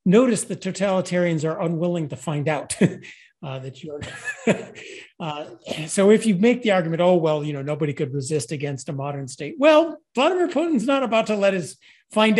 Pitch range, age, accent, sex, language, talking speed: 150-200 Hz, 40-59, American, male, English, 185 wpm